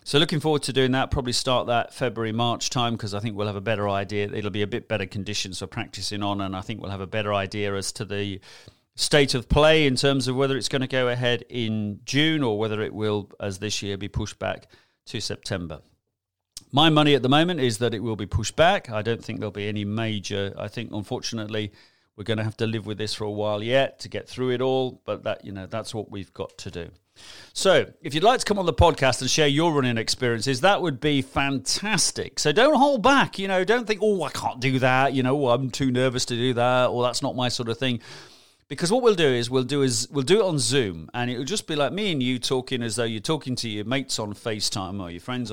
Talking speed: 260 wpm